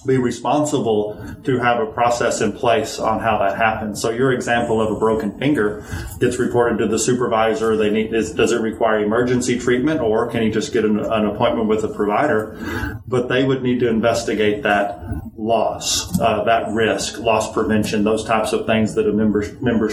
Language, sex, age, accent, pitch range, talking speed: English, male, 30-49, American, 110-120 Hz, 195 wpm